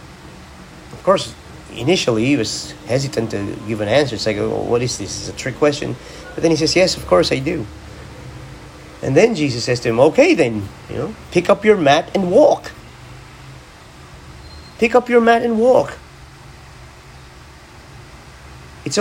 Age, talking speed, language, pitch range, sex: 40-59, 165 wpm, English, 105-160 Hz, male